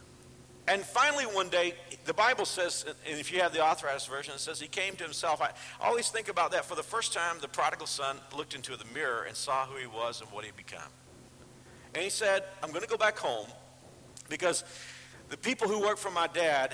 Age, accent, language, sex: 50-69, American, English, male